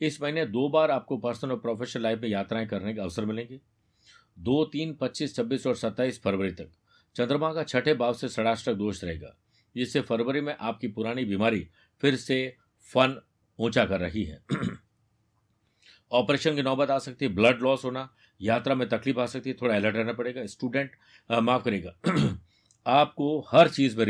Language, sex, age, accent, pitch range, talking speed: Hindi, male, 50-69, native, 105-130 Hz, 175 wpm